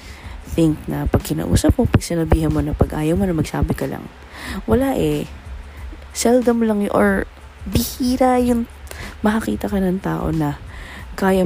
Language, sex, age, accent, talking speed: Filipino, female, 20-39, native, 150 wpm